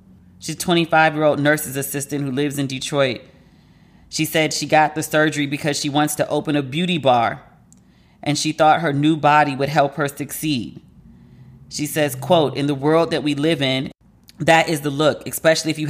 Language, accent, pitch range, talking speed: English, American, 145-160 Hz, 190 wpm